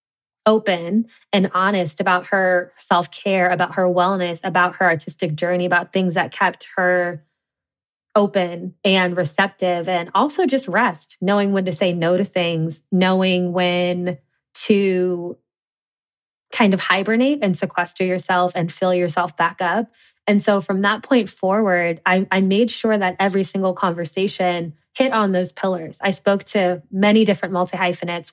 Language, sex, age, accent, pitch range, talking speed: English, female, 20-39, American, 175-205 Hz, 150 wpm